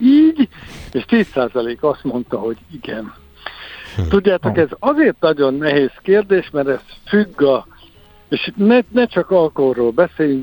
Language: Hungarian